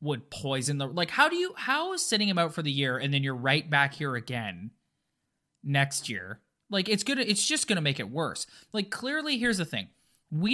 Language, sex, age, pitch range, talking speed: English, male, 20-39, 130-175 Hz, 220 wpm